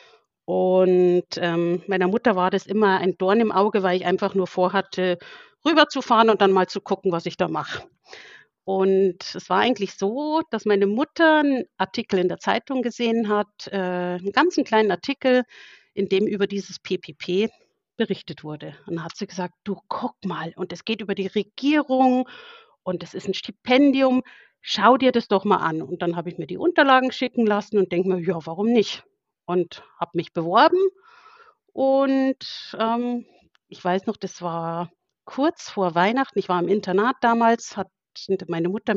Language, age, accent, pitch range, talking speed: German, 50-69, German, 180-250 Hz, 175 wpm